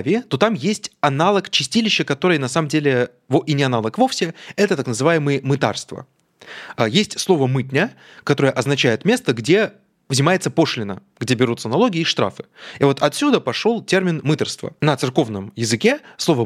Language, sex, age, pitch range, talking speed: Russian, male, 20-39, 125-180 Hz, 150 wpm